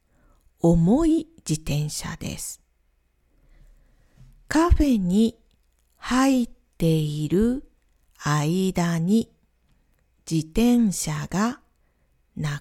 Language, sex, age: Japanese, female, 40-59